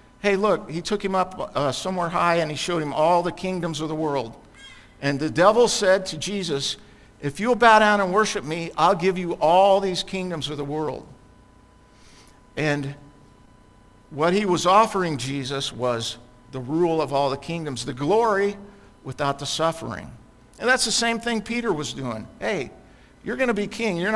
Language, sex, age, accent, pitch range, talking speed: English, male, 50-69, American, 125-185 Hz, 185 wpm